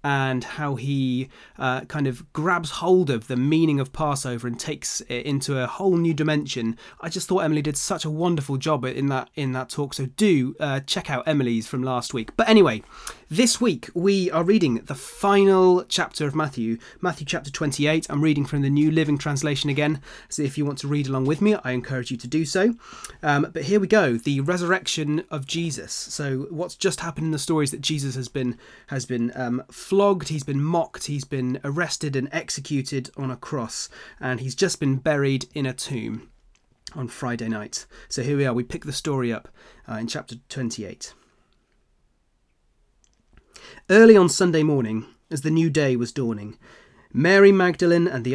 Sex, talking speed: male, 190 wpm